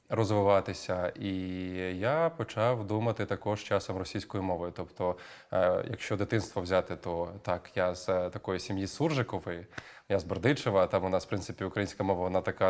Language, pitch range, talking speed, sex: Ukrainian, 100-120 Hz, 160 wpm, male